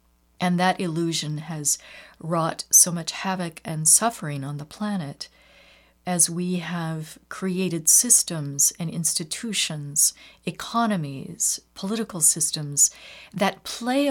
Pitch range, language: 150-195 Hz, English